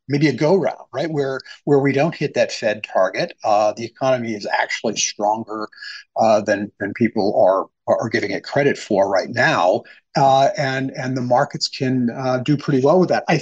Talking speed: 190 wpm